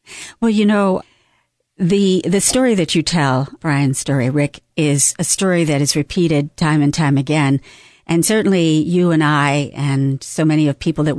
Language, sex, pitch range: English, female, 150-200 Hz